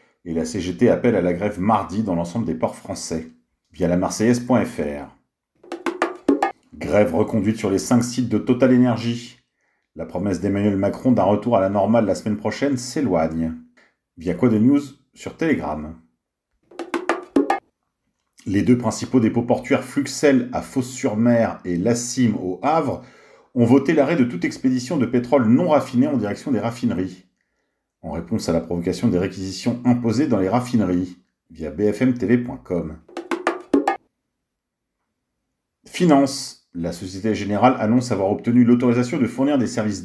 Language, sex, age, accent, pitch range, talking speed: French, male, 40-59, French, 95-130 Hz, 140 wpm